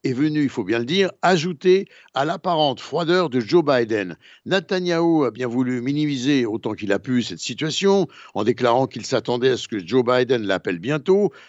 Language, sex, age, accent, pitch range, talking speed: Italian, male, 60-79, French, 120-155 Hz, 190 wpm